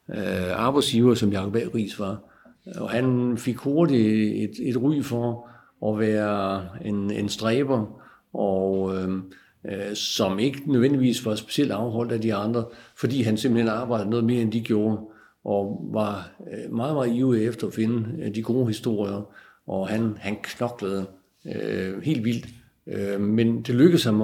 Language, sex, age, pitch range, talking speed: Danish, male, 60-79, 105-125 Hz, 150 wpm